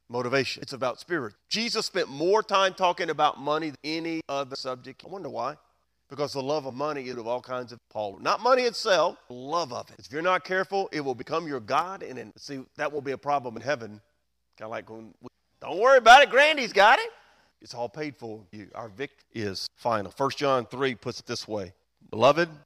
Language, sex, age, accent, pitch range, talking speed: English, male, 40-59, American, 120-165 Hz, 215 wpm